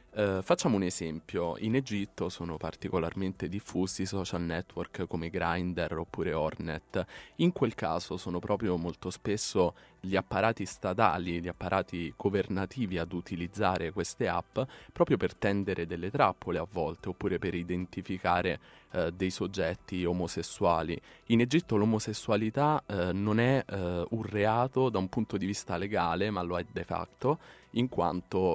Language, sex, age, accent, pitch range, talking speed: Italian, male, 20-39, native, 90-105 Hz, 140 wpm